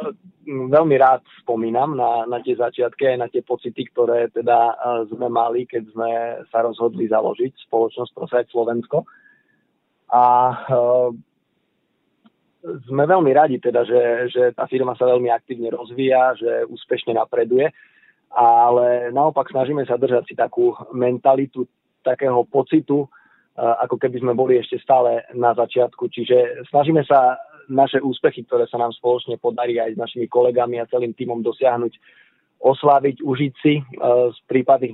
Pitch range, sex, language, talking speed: 120-135 Hz, male, Slovak, 140 wpm